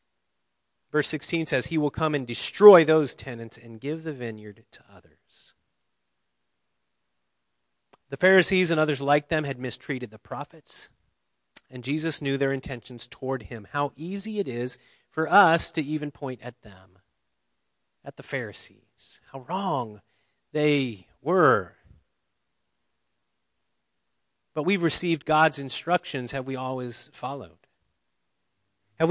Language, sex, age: English, male, 30-49